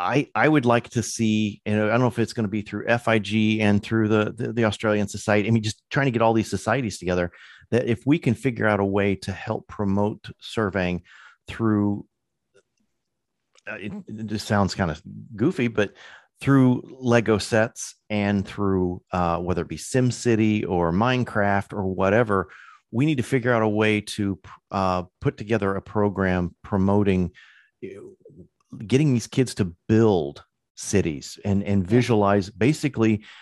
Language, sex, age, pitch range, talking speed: English, male, 40-59, 100-120 Hz, 165 wpm